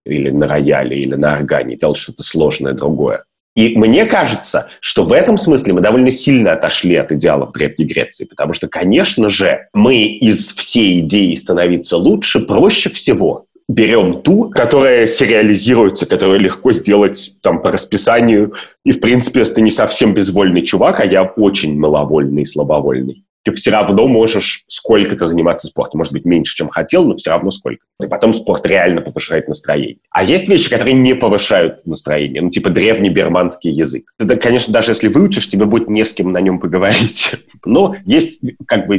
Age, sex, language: 30-49, male, Russian